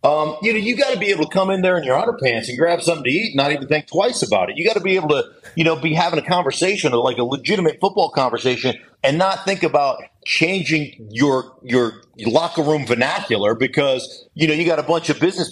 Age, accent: 50-69, American